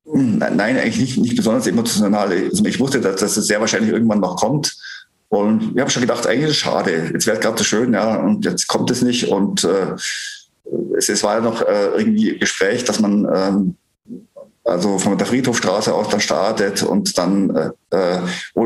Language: German